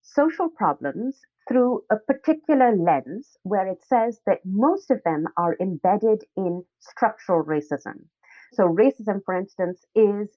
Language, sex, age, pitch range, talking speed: English, female, 30-49, 175-250 Hz, 135 wpm